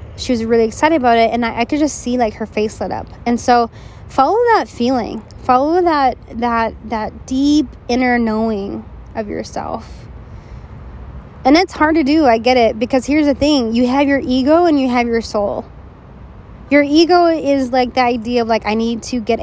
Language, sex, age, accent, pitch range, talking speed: English, female, 20-39, American, 215-265 Hz, 200 wpm